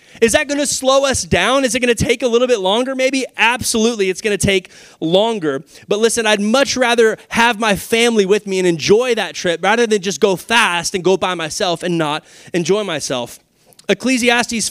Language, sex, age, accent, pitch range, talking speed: English, male, 20-39, American, 175-230 Hz, 210 wpm